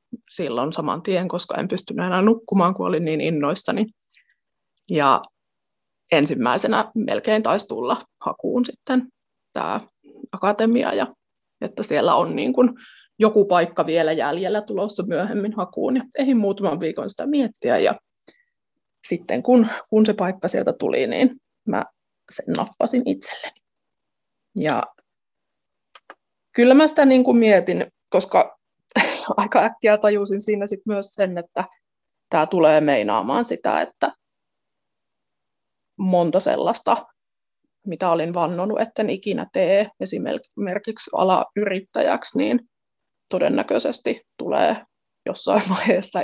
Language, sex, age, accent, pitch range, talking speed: Finnish, female, 20-39, native, 185-250 Hz, 110 wpm